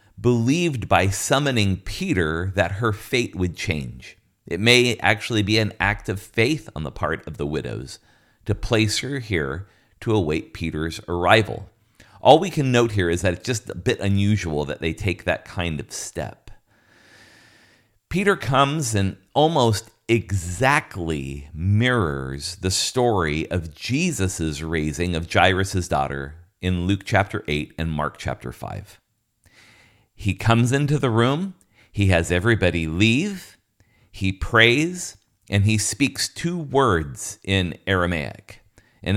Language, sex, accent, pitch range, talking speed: English, male, American, 90-115 Hz, 140 wpm